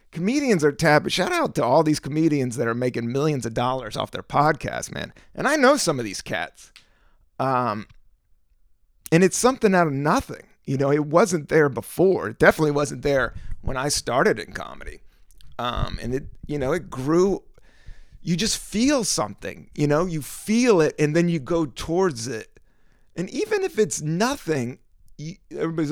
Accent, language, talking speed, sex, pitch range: American, English, 180 wpm, male, 130-220 Hz